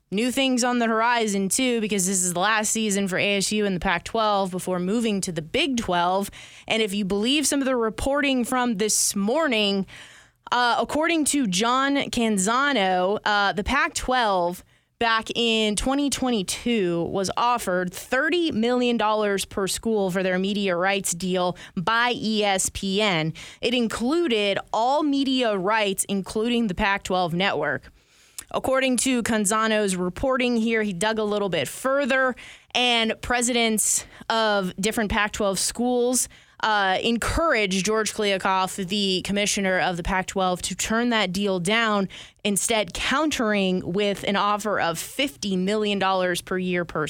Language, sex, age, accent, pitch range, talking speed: English, female, 20-39, American, 190-230 Hz, 140 wpm